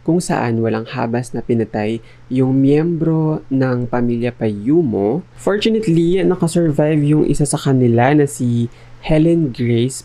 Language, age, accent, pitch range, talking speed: English, 20-39, Filipino, 115-145 Hz, 125 wpm